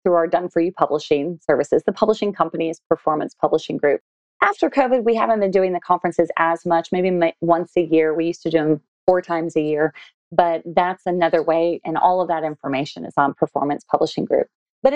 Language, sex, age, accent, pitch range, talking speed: English, female, 30-49, American, 160-205 Hz, 200 wpm